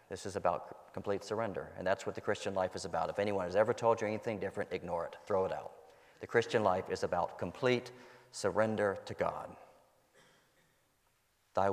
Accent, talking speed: American, 185 wpm